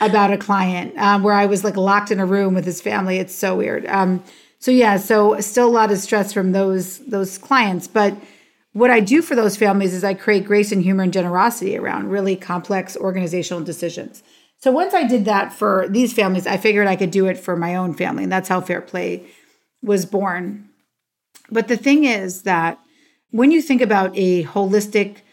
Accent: American